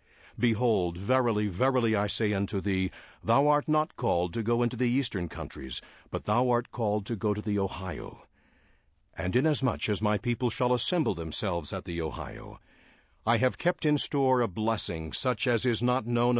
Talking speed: 180 wpm